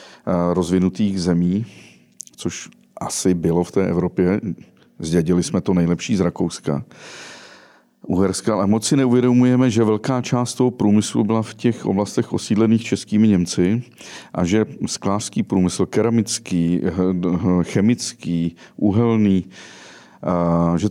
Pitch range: 85-110 Hz